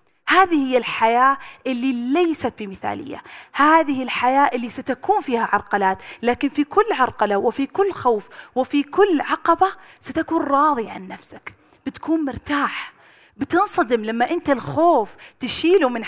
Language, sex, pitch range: Arabic, female, 240-320 Hz